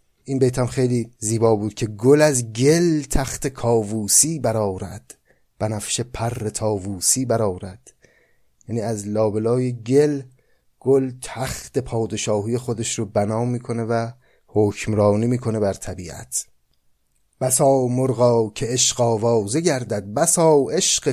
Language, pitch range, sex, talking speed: Persian, 105-140 Hz, male, 115 wpm